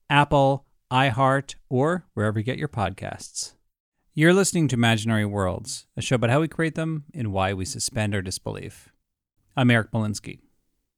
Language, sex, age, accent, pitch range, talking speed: English, male, 40-59, American, 105-135 Hz, 160 wpm